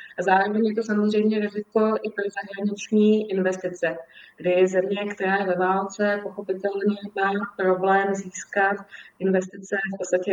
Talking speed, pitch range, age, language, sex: 140 wpm, 185-215 Hz, 20-39, Slovak, female